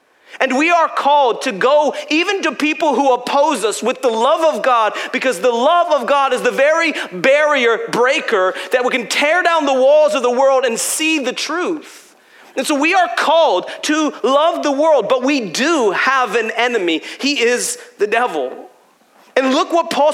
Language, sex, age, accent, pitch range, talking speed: English, male, 30-49, American, 245-330 Hz, 190 wpm